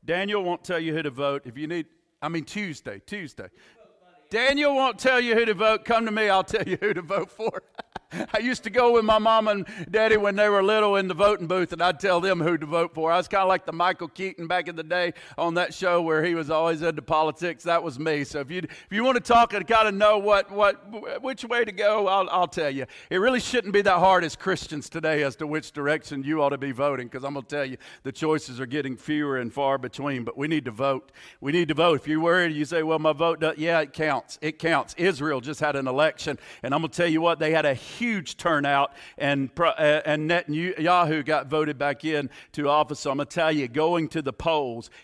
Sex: male